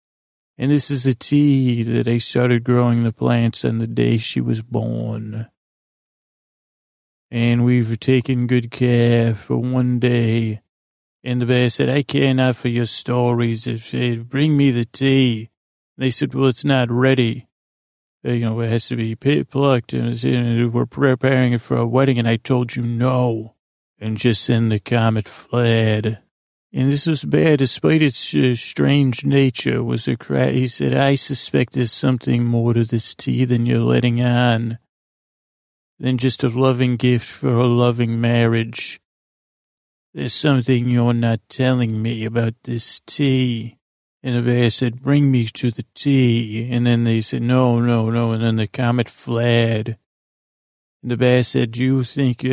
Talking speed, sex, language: 170 wpm, male, English